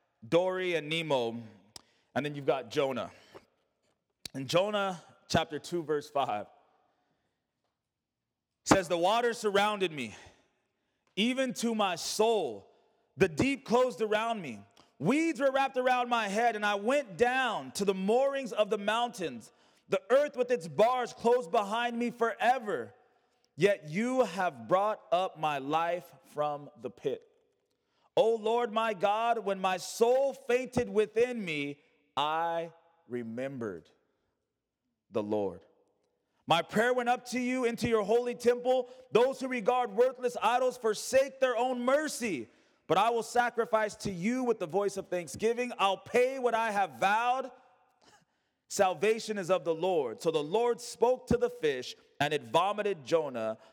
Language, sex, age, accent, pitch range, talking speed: English, male, 30-49, American, 180-250 Hz, 145 wpm